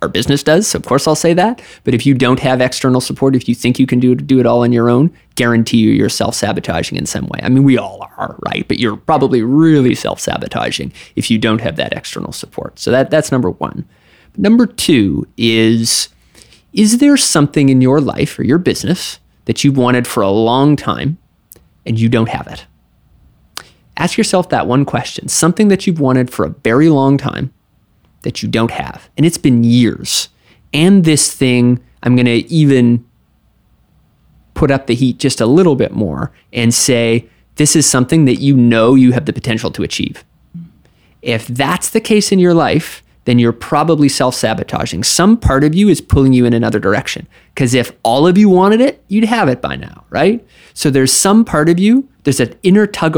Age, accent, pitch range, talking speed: 30-49, American, 120-155 Hz, 200 wpm